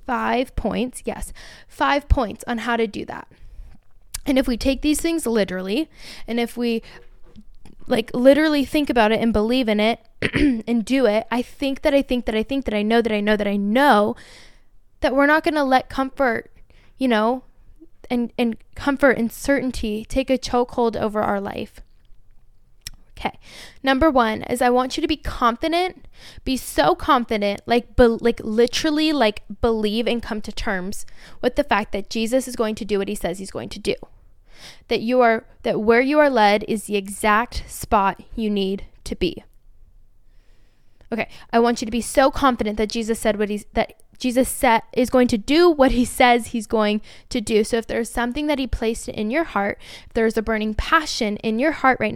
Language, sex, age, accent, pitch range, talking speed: English, female, 10-29, American, 215-265 Hz, 195 wpm